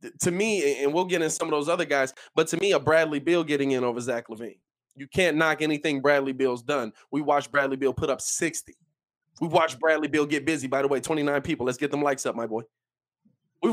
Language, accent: English, American